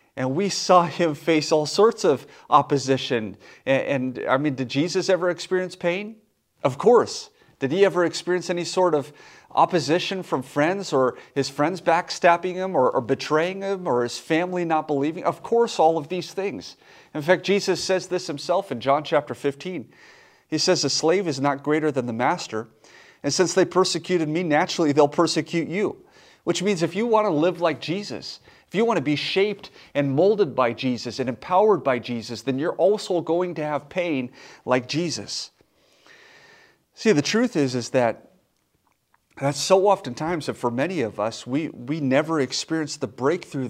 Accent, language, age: American, English, 30-49